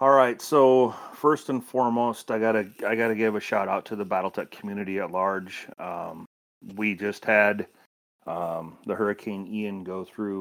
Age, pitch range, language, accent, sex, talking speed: 30-49, 85-105 Hz, English, American, male, 175 wpm